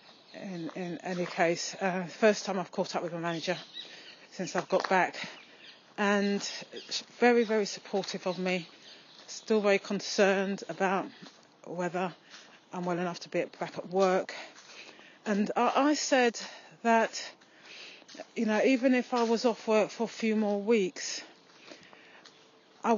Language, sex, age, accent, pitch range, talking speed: English, female, 30-49, British, 180-215 Hz, 145 wpm